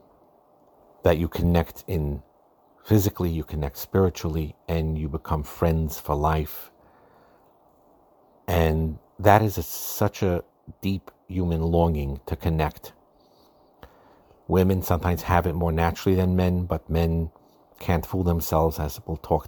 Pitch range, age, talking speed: 75-85 Hz, 50-69, 125 wpm